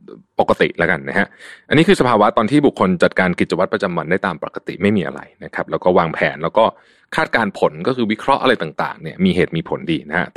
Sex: male